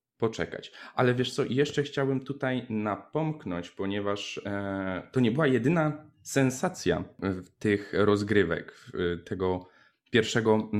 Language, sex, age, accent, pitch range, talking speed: Polish, male, 10-29, native, 95-110 Hz, 100 wpm